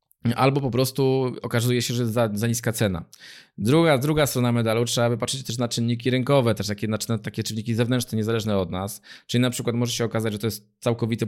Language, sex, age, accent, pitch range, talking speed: Polish, male, 20-39, native, 105-125 Hz, 230 wpm